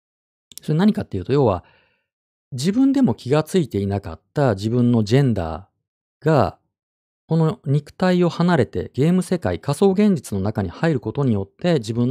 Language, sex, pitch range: Japanese, male, 100-150 Hz